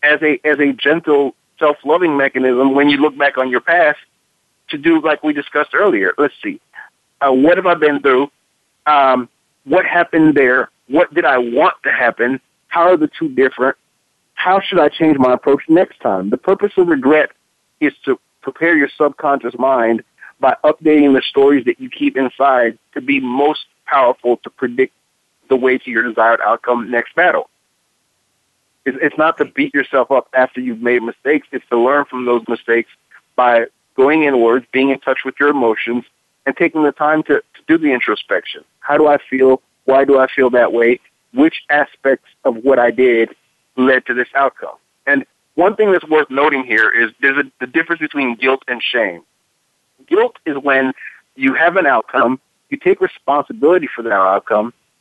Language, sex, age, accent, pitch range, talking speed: English, male, 50-69, American, 130-165 Hz, 180 wpm